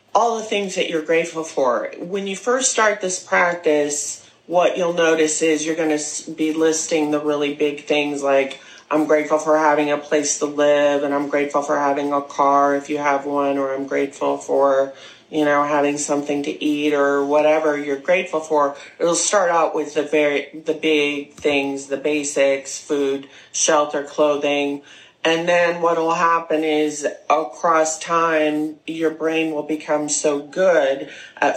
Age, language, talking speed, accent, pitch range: 30-49, English, 170 wpm, American, 145-160 Hz